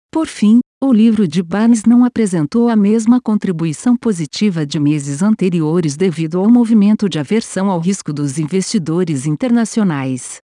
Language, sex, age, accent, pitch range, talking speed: Portuguese, female, 50-69, Brazilian, 155-220 Hz, 145 wpm